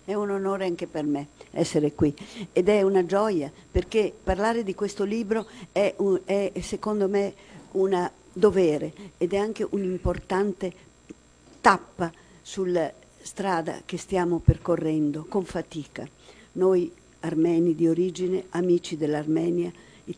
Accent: native